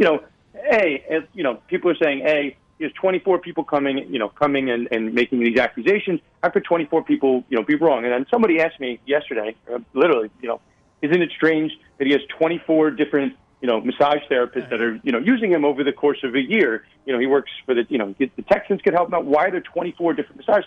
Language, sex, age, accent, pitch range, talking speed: English, male, 40-59, American, 135-190 Hz, 240 wpm